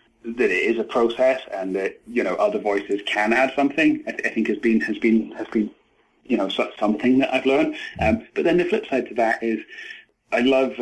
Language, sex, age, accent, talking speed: English, male, 30-49, British, 235 wpm